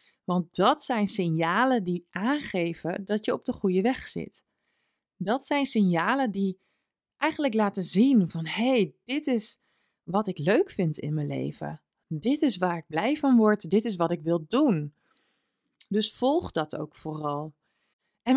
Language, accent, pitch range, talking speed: Dutch, Dutch, 165-230 Hz, 165 wpm